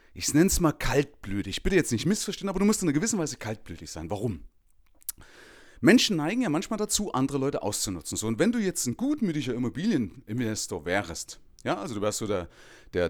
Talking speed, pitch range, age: 200 wpm, 120-180 Hz, 30-49